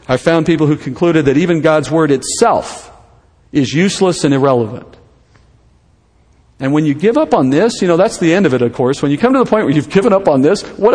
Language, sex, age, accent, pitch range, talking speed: English, male, 50-69, American, 140-210 Hz, 235 wpm